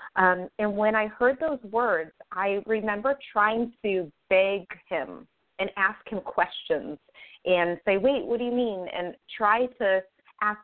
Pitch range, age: 175-210 Hz, 30-49